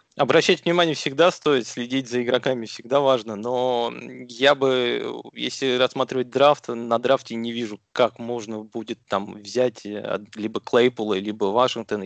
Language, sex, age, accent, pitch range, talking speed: Russian, male, 20-39, native, 105-130 Hz, 140 wpm